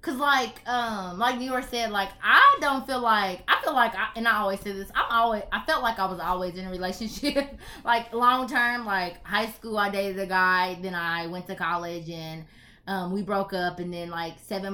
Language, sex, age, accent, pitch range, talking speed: English, female, 20-39, American, 180-235 Hz, 225 wpm